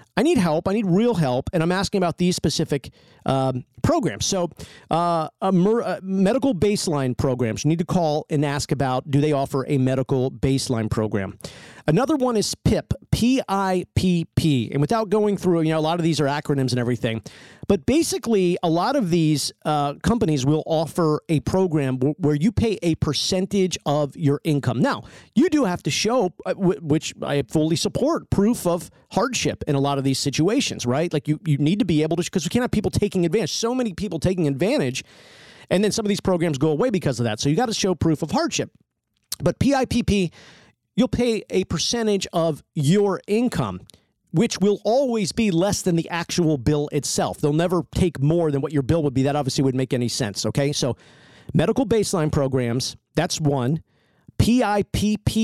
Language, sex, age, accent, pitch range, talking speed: English, male, 40-59, American, 145-195 Hz, 195 wpm